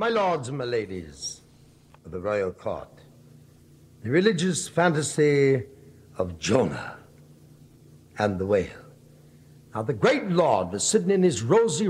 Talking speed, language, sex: 130 wpm, English, male